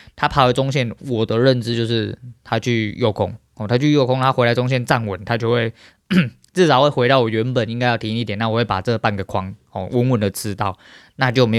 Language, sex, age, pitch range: Chinese, male, 20-39, 105-125 Hz